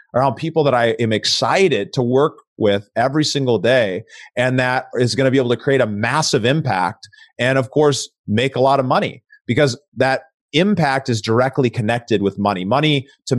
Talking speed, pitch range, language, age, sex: 190 wpm, 115-140 Hz, English, 30-49, male